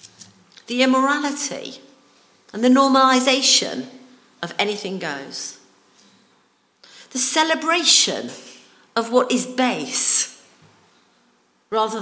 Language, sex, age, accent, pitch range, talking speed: English, female, 50-69, British, 220-285 Hz, 75 wpm